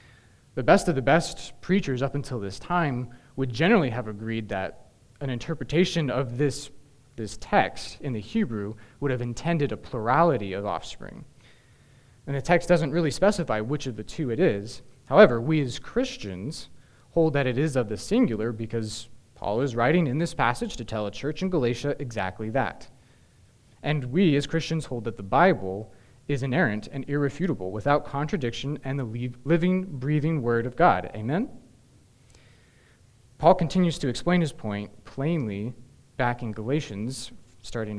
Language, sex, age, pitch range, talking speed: English, male, 20-39, 115-150 Hz, 160 wpm